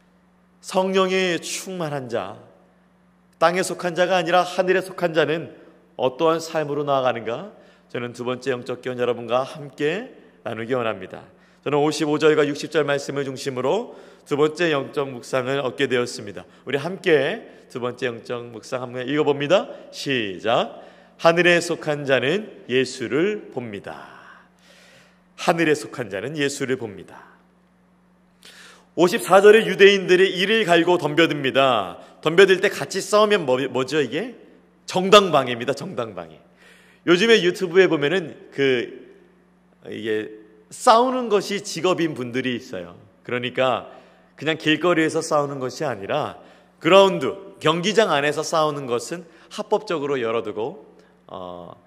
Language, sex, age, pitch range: Korean, male, 40-59, 130-180 Hz